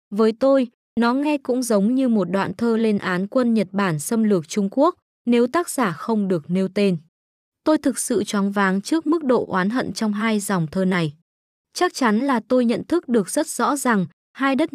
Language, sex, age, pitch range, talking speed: Vietnamese, female, 20-39, 190-250 Hz, 215 wpm